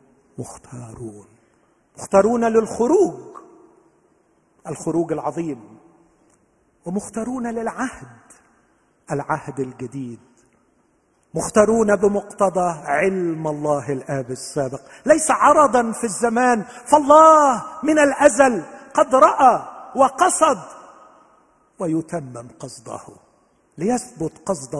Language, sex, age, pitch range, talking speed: Arabic, male, 50-69, 145-225 Hz, 70 wpm